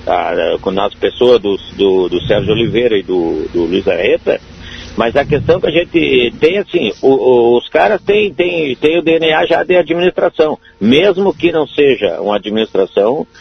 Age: 60-79